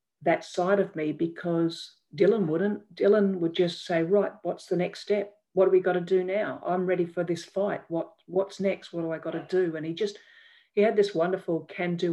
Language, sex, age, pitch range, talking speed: English, female, 50-69, 160-190 Hz, 225 wpm